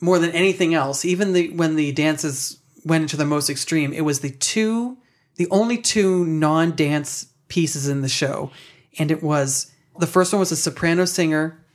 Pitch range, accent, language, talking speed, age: 145-170 Hz, American, English, 180 wpm, 30-49